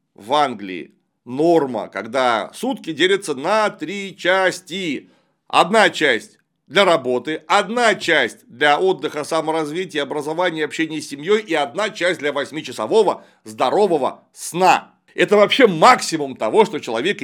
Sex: male